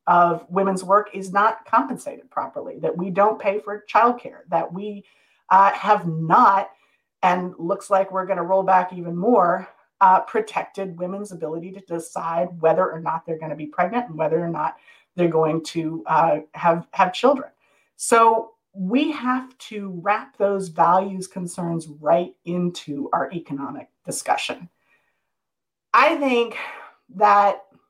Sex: female